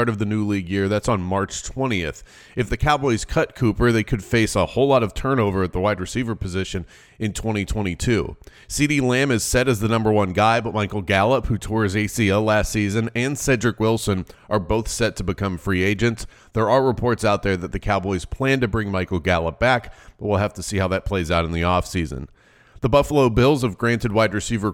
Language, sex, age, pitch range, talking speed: English, male, 30-49, 95-120 Hz, 220 wpm